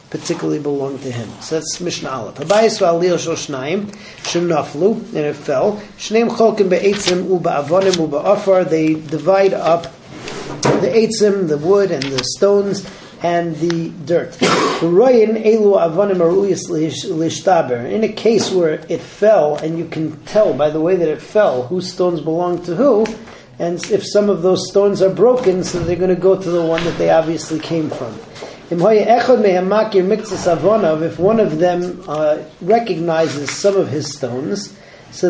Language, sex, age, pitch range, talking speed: English, male, 40-59, 160-195 Hz, 130 wpm